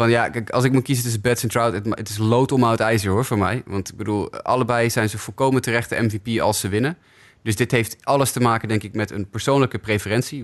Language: Dutch